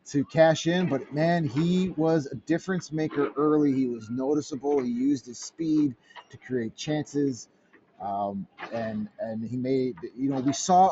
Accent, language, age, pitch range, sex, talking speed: American, English, 30-49, 130-160 Hz, male, 165 wpm